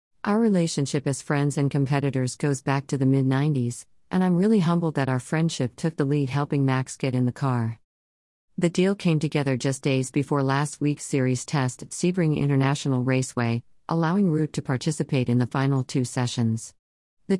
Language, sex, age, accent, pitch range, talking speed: English, female, 40-59, American, 135-155 Hz, 180 wpm